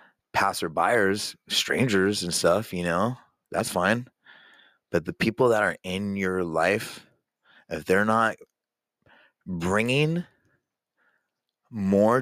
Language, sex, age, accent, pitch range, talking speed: English, male, 30-49, American, 90-120 Hz, 110 wpm